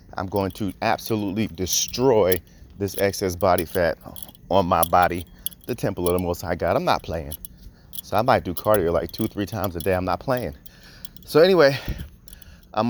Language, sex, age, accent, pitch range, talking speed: English, male, 30-49, American, 90-125 Hz, 180 wpm